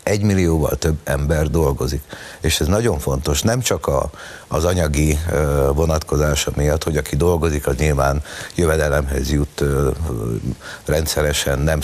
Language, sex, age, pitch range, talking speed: Hungarian, male, 60-79, 75-90 Hz, 120 wpm